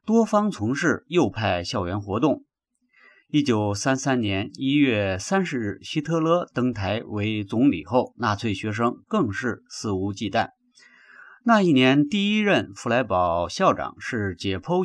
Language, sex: Chinese, male